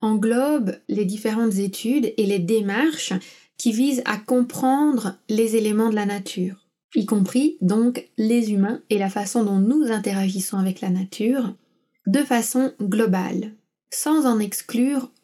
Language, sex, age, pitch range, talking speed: French, female, 20-39, 200-250 Hz, 140 wpm